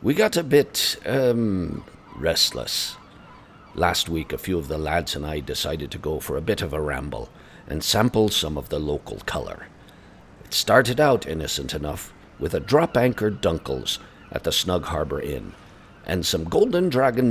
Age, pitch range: 60-79, 75-105 Hz